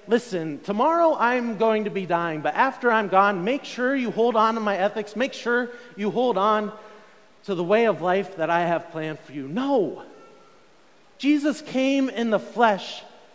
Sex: male